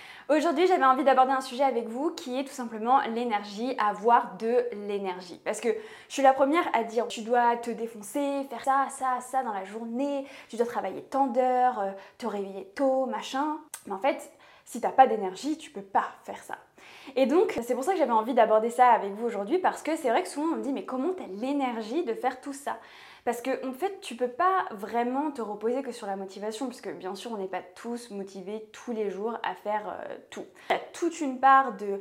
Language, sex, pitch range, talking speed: French, female, 210-275 Hz, 235 wpm